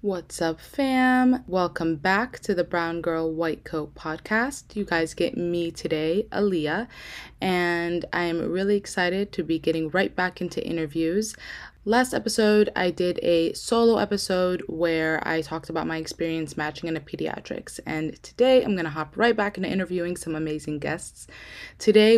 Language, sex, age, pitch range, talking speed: English, female, 20-39, 165-205 Hz, 160 wpm